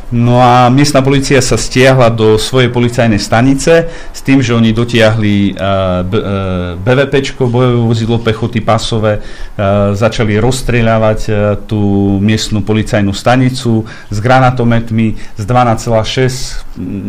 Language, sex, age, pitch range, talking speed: Slovak, male, 40-59, 105-125 Hz, 105 wpm